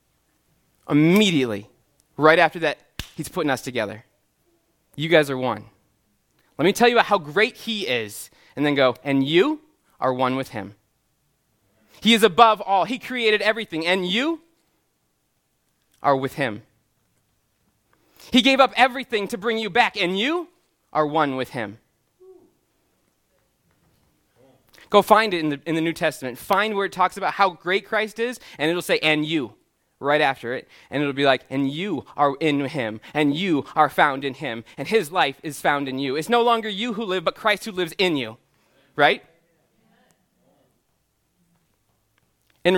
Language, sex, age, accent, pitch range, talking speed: English, male, 20-39, American, 125-190 Hz, 165 wpm